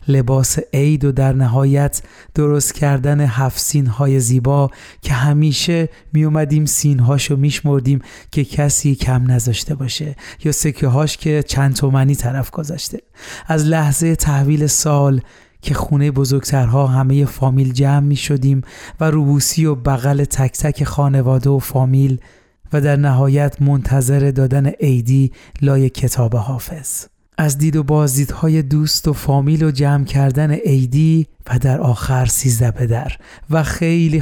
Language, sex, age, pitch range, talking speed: Persian, male, 30-49, 130-150 Hz, 135 wpm